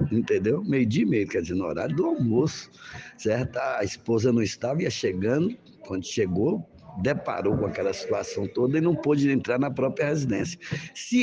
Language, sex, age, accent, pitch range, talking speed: Portuguese, male, 60-79, Brazilian, 130-205 Hz, 170 wpm